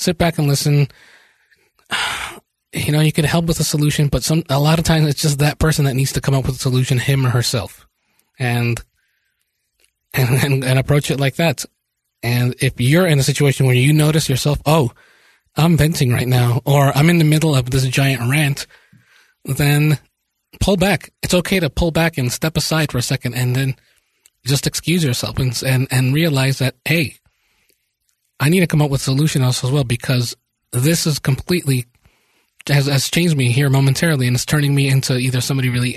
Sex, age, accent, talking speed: male, 20-39, American, 195 wpm